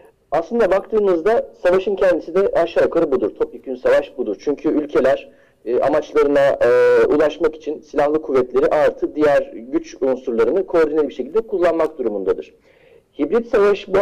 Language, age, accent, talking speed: Turkish, 40-59, native, 135 wpm